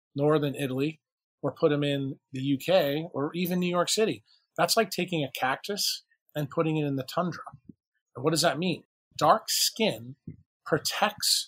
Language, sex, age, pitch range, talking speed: English, male, 40-59, 140-180 Hz, 165 wpm